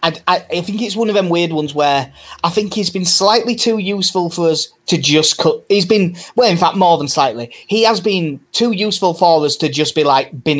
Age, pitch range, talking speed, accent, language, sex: 20-39, 130-170 Hz, 240 wpm, British, English, male